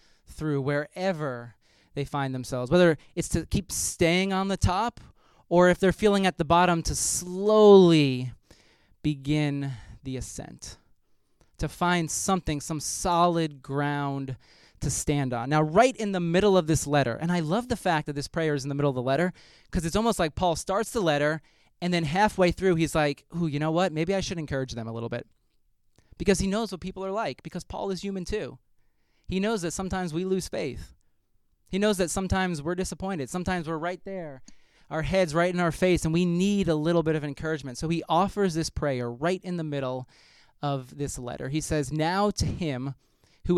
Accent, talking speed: American, 200 wpm